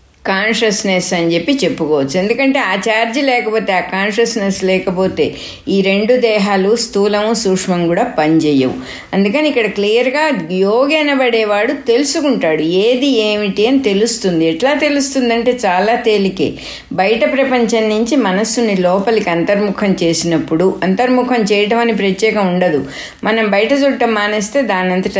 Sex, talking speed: female, 115 wpm